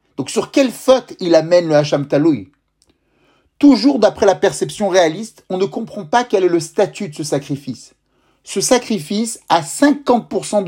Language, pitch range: French, 155-210 Hz